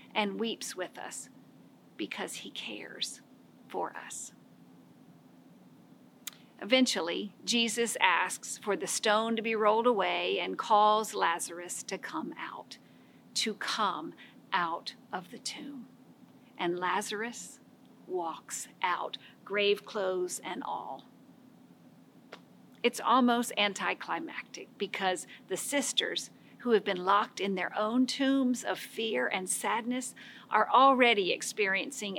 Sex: female